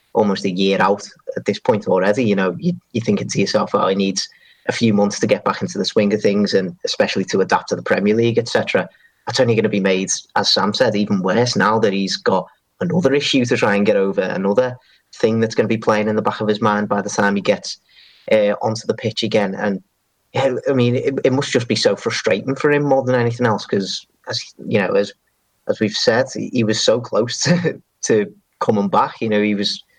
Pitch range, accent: 100-115 Hz, British